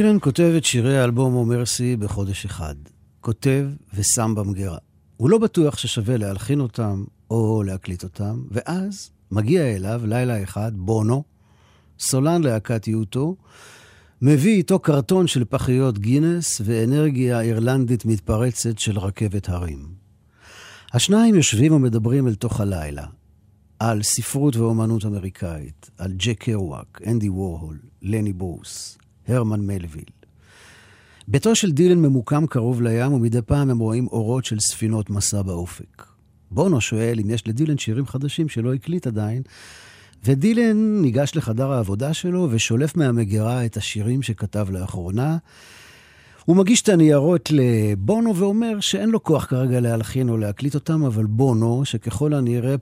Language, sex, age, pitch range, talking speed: Hebrew, male, 50-69, 105-140 Hz, 130 wpm